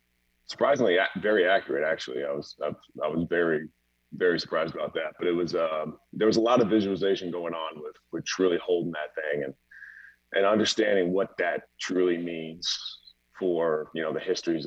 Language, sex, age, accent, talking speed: English, male, 30-49, American, 175 wpm